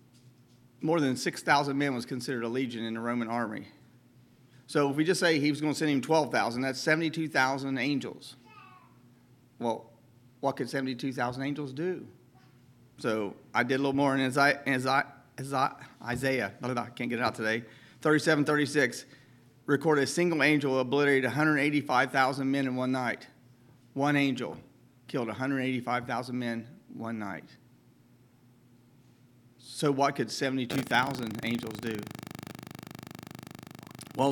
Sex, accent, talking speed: male, American, 130 wpm